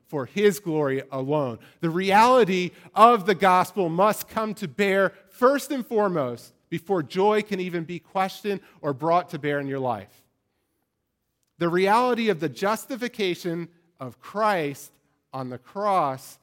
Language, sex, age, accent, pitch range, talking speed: English, male, 40-59, American, 120-180 Hz, 140 wpm